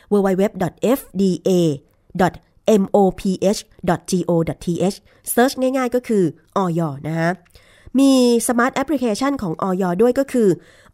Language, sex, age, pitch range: Thai, female, 20-39, 170-225 Hz